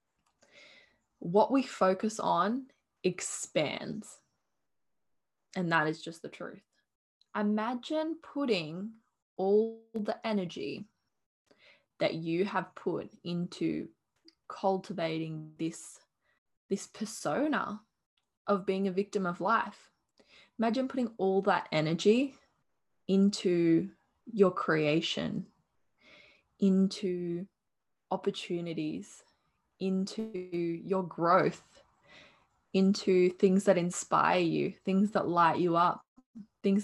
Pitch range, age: 180-215 Hz, 10-29